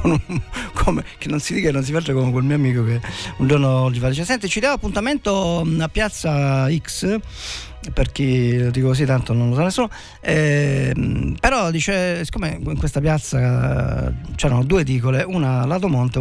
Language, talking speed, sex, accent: Italian, 180 wpm, male, native